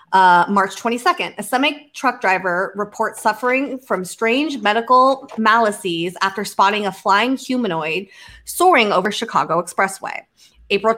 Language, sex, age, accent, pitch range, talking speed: English, female, 20-39, American, 190-235 Hz, 120 wpm